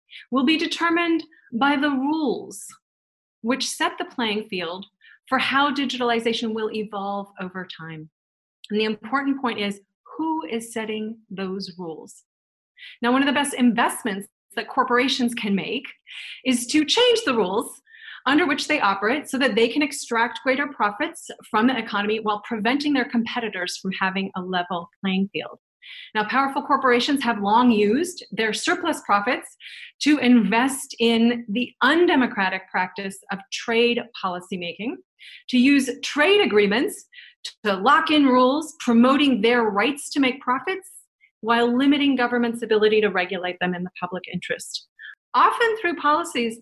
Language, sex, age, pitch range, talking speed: English, female, 30-49, 205-285 Hz, 145 wpm